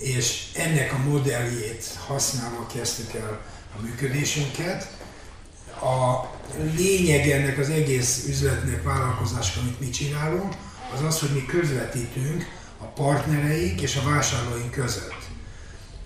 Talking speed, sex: 110 wpm, male